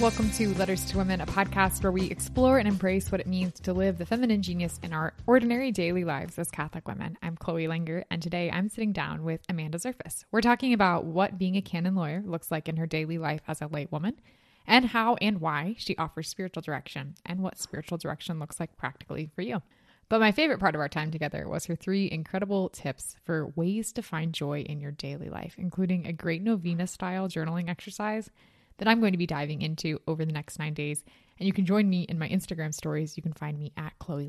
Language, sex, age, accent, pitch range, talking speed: English, female, 20-39, American, 160-195 Hz, 225 wpm